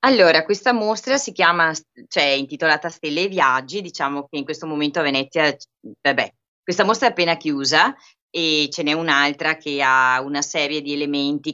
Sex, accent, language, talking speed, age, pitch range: female, native, Italian, 175 wpm, 30-49, 140-175 Hz